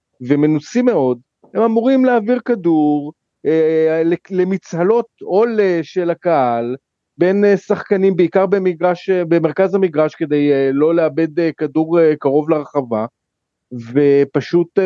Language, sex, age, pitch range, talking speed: Hebrew, male, 40-59, 145-205 Hz, 95 wpm